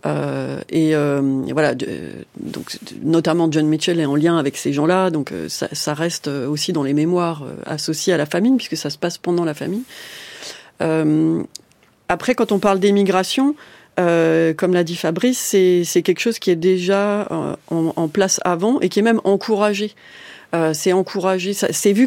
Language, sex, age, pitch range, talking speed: French, female, 30-49, 160-210 Hz, 195 wpm